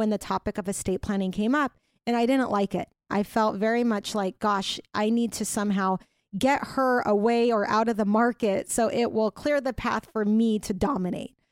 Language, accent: English, American